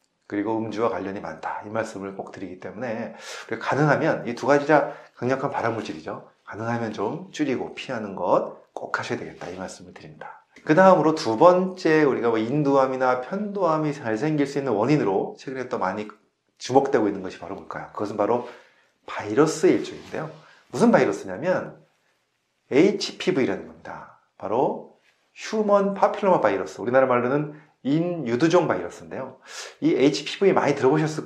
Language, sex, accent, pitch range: Korean, male, native, 120-175 Hz